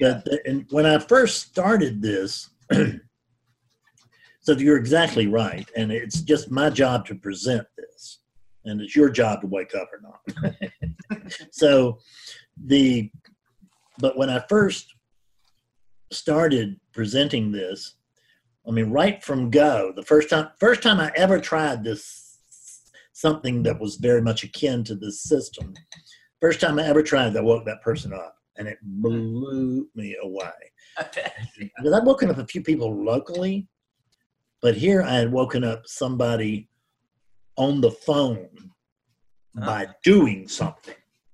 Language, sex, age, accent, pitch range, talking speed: English, male, 50-69, American, 115-150 Hz, 135 wpm